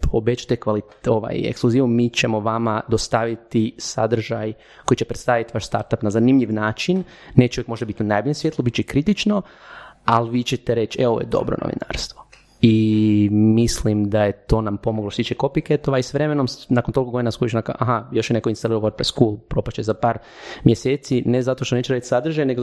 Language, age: Croatian, 30-49